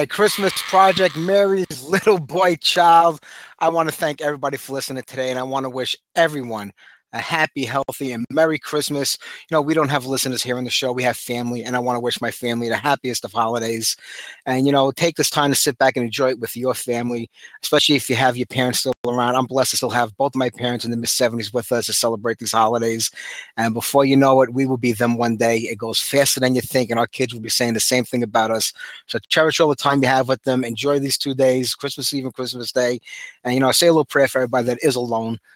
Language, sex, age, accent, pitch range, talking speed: English, male, 30-49, American, 120-145 Hz, 250 wpm